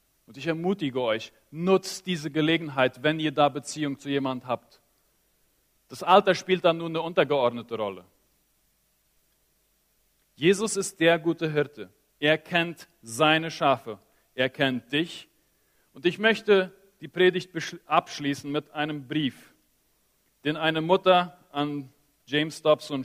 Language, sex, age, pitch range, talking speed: Spanish, male, 40-59, 135-170 Hz, 130 wpm